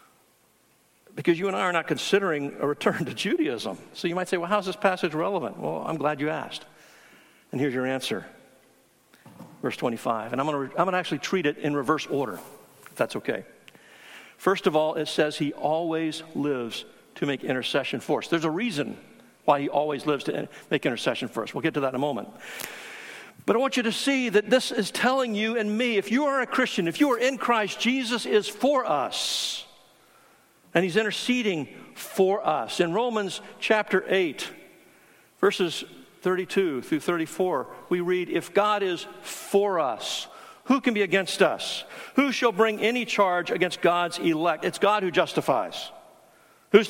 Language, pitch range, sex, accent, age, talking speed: English, 160-225 Hz, male, American, 60-79, 180 wpm